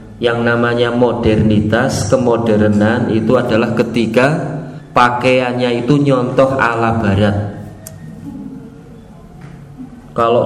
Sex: male